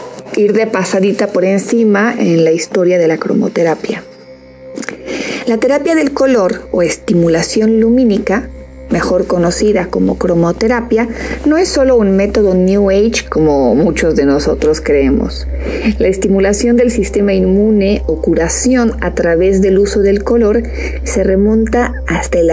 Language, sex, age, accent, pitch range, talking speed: Spanish, female, 40-59, Mexican, 175-235 Hz, 135 wpm